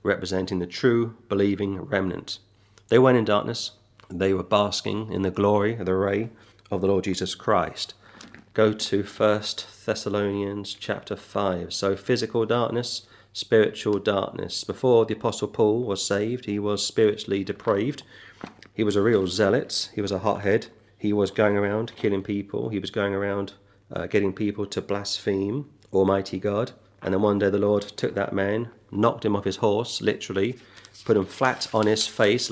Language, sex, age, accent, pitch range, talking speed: English, male, 40-59, British, 95-110 Hz, 170 wpm